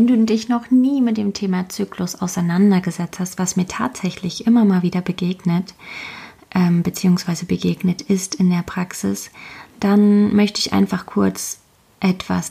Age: 20-39